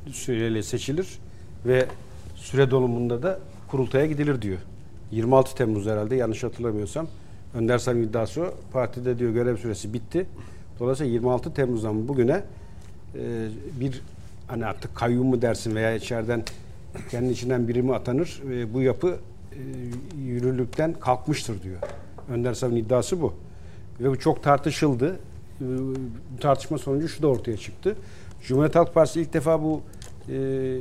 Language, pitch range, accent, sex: Turkish, 110-140 Hz, native, male